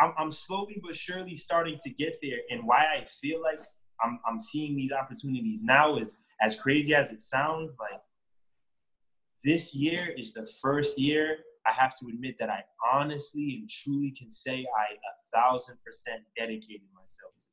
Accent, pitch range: American, 120-155 Hz